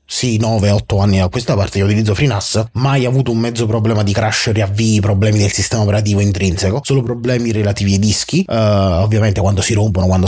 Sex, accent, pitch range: male, native, 105-130 Hz